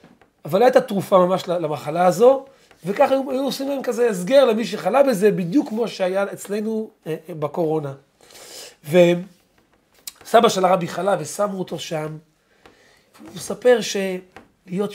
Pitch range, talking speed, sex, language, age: 175-235 Hz, 135 wpm, male, Hebrew, 40-59